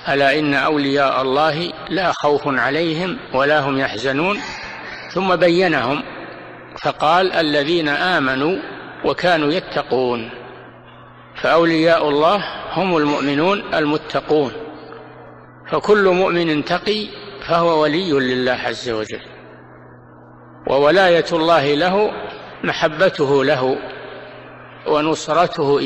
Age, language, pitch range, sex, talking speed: 50-69, Arabic, 135-175 Hz, male, 85 wpm